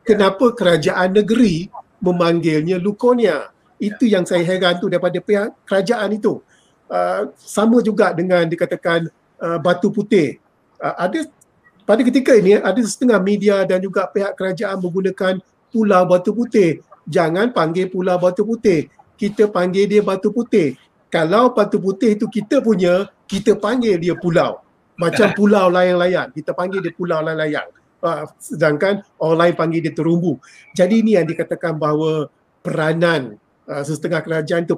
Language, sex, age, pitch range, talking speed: Malay, male, 50-69, 165-205 Hz, 140 wpm